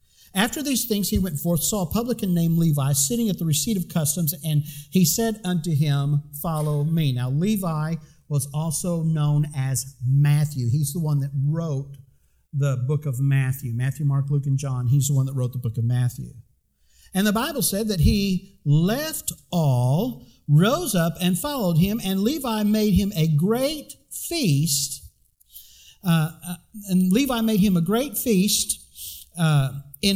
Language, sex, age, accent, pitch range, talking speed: English, male, 50-69, American, 145-225 Hz, 170 wpm